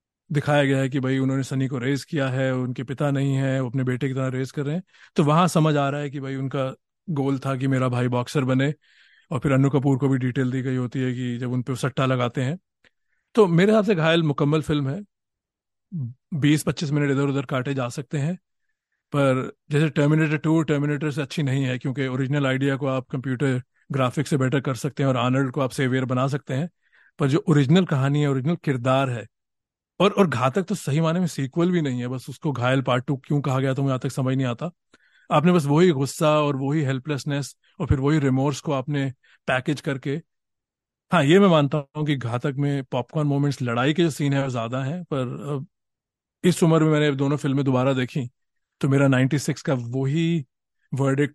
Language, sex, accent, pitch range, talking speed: Hindi, male, native, 130-150 Hz, 215 wpm